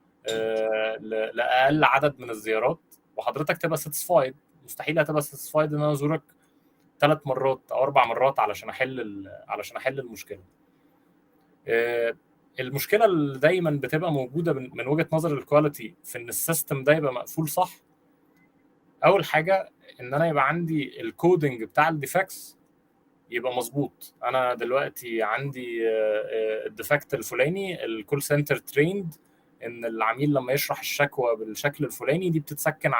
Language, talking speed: Arabic, 120 wpm